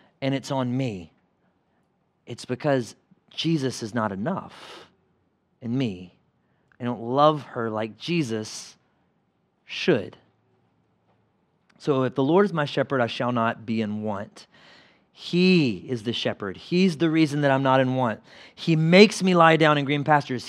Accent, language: American, English